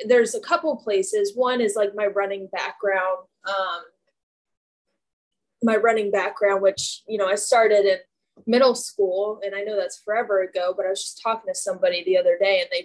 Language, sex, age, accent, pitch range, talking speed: English, female, 10-29, American, 190-265 Hz, 185 wpm